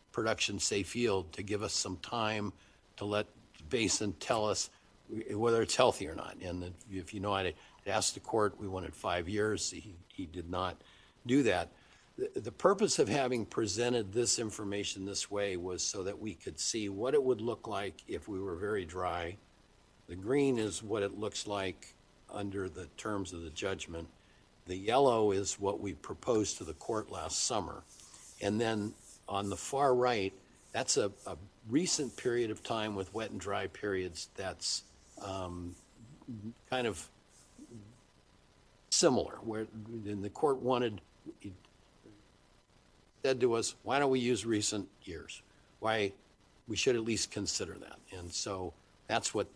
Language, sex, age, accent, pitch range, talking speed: English, male, 60-79, American, 95-110 Hz, 165 wpm